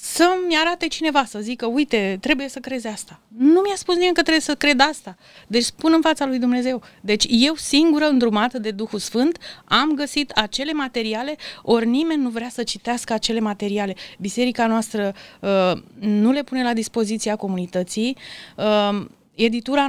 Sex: female